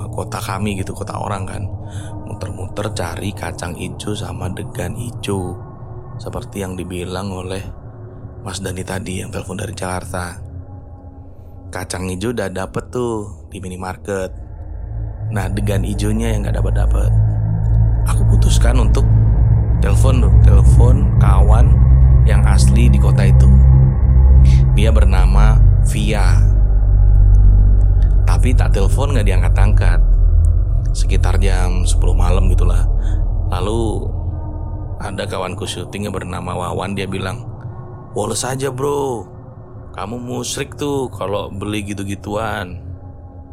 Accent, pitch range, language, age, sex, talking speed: native, 90-110 Hz, Indonesian, 30-49, male, 110 wpm